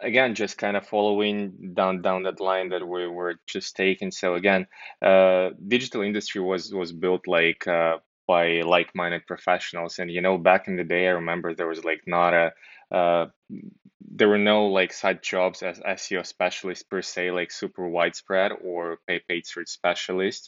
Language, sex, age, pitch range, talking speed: English, male, 20-39, 85-95 Hz, 180 wpm